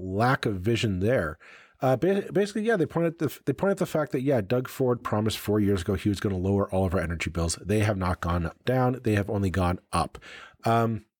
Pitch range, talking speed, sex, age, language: 95-120 Hz, 240 wpm, male, 40-59, English